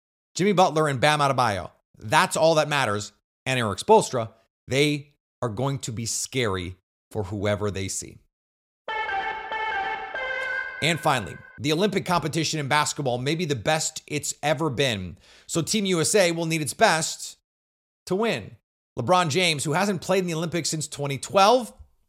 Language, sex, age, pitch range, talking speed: English, male, 30-49, 125-175 Hz, 150 wpm